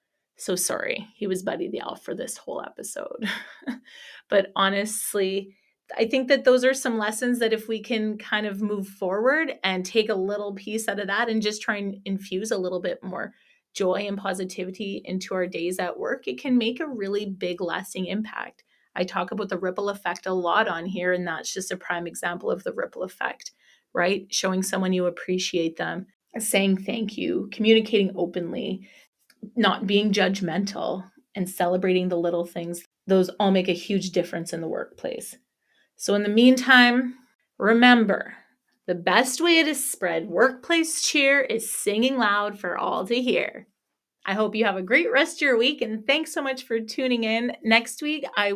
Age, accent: 30-49, American